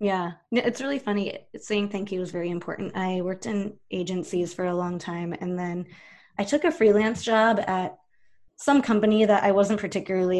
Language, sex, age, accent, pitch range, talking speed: English, female, 20-39, American, 185-230 Hz, 185 wpm